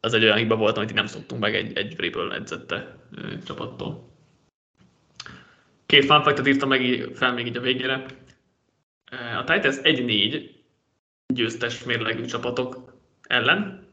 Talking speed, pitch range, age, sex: 140 wpm, 120-145 Hz, 20-39, male